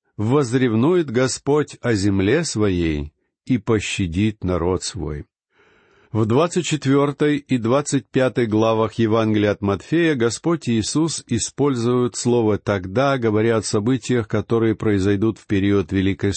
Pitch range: 105-140 Hz